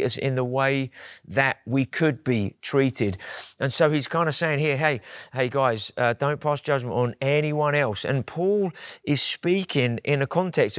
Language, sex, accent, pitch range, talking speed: English, male, British, 125-155 Hz, 185 wpm